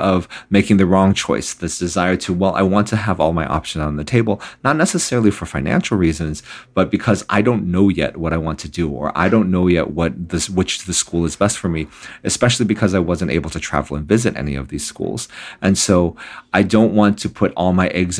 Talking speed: 235 wpm